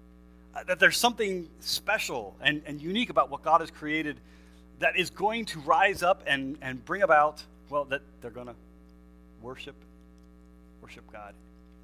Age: 40-59